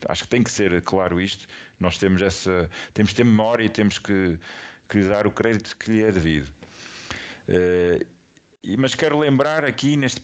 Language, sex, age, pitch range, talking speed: Portuguese, male, 50-69, 105-130 Hz, 190 wpm